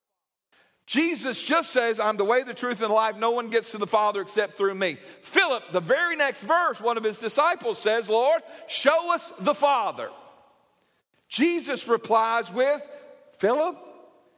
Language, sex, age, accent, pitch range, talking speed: English, male, 50-69, American, 225-290 Hz, 165 wpm